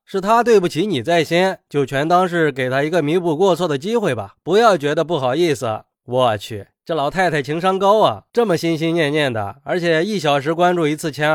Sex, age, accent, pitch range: male, 20-39, native, 150-195 Hz